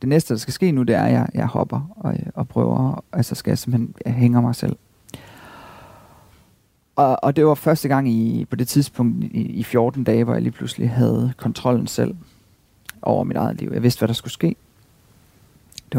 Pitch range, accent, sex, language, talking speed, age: 120-140 Hz, native, male, Danish, 200 wpm, 40-59